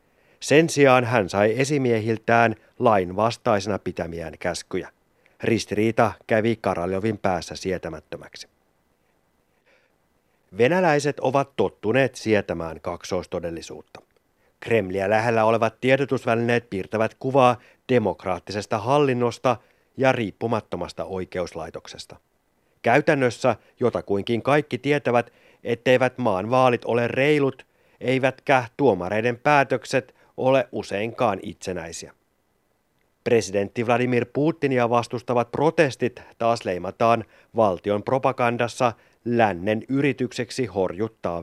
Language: Finnish